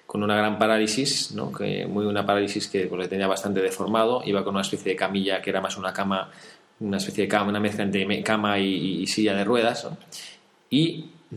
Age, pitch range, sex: 20-39, 100-140 Hz, male